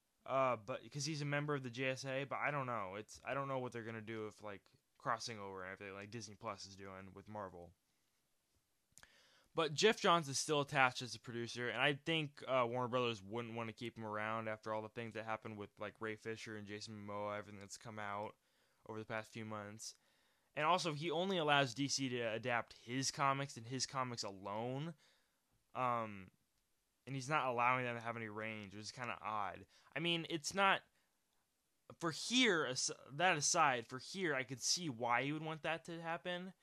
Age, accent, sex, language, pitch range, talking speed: 10-29, American, male, English, 110-145 Hz, 210 wpm